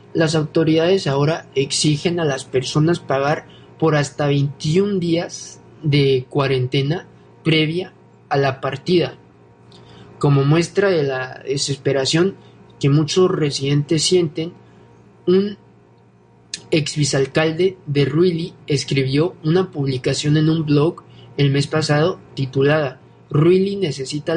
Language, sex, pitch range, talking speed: Spanish, male, 135-165 Hz, 105 wpm